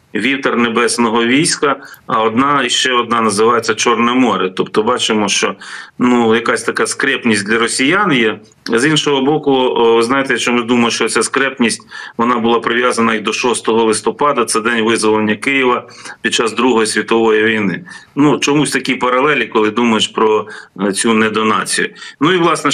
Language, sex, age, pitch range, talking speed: Ukrainian, male, 40-59, 110-130 Hz, 160 wpm